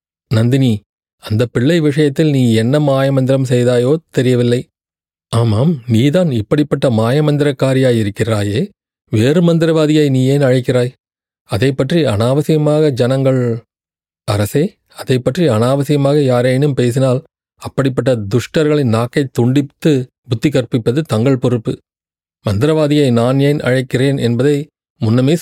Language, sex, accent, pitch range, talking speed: Tamil, male, native, 115-145 Hz, 95 wpm